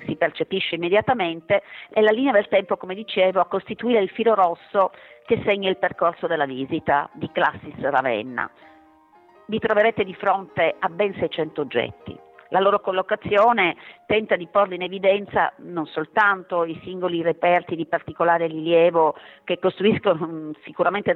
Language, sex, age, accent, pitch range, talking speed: Italian, female, 40-59, native, 170-225 Hz, 145 wpm